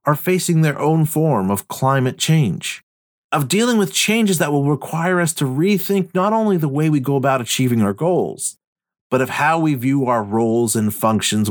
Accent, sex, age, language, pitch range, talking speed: American, male, 40-59, English, 130-170 Hz, 195 wpm